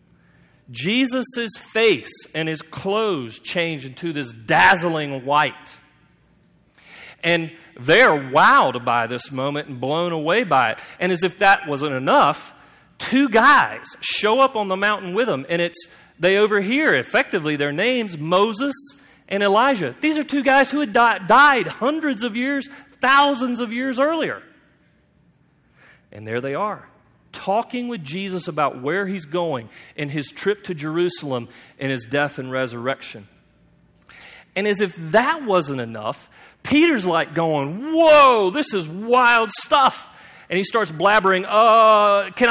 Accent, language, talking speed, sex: American, English, 145 wpm, male